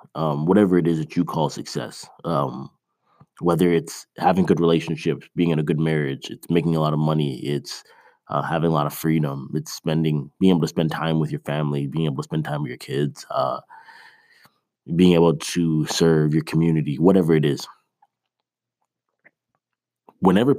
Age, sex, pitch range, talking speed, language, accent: 30-49, male, 75-90 Hz, 180 wpm, English, American